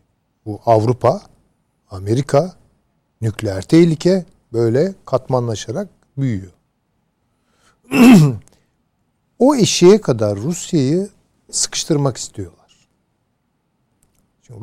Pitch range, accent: 110-165 Hz, native